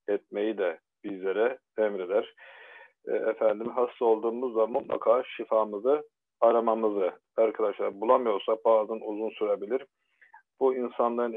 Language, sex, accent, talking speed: Turkish, male, native, 95 wpm